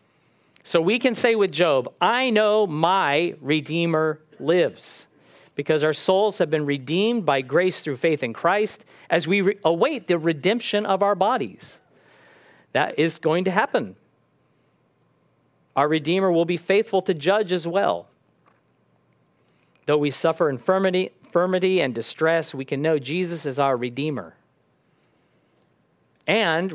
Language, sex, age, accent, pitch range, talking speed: English, male, 40-59, American, 140-190 Hz, 135 wpm